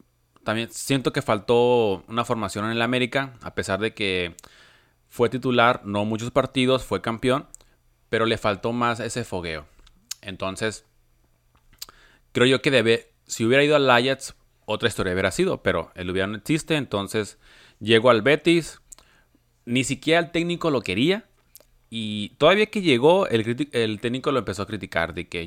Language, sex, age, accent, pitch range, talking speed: Spanish, male, 30-49, Mexican, 95-120 Hz, 160 wpm